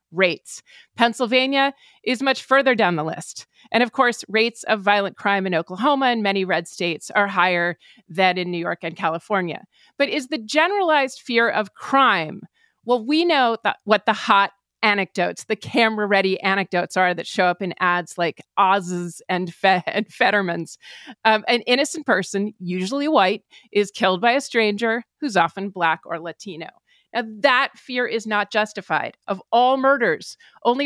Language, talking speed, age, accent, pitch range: English, 160 wpm, 40-59, American, 185-245 Hz